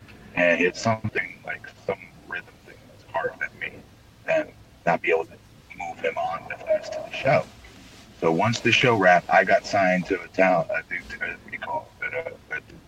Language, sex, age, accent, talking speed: English, male, 40-59, American, 185 wpm